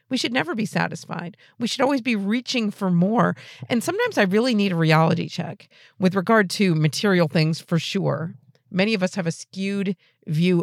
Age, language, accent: 40-59, English, American